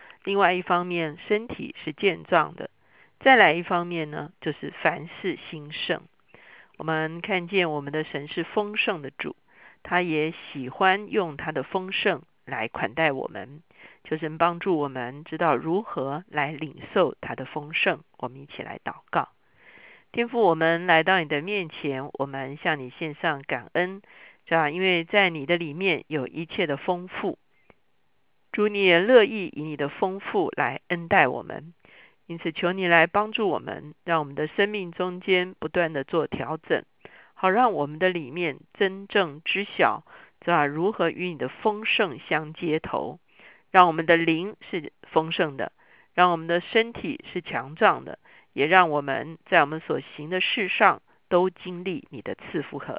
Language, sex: Chinese, female